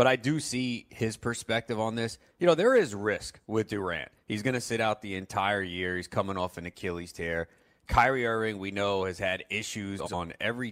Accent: American